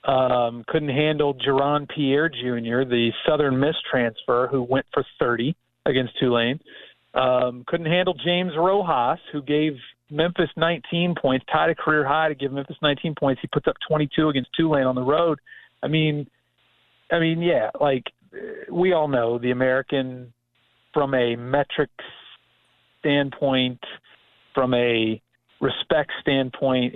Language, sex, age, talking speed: English, male, 40-59, 140 wpm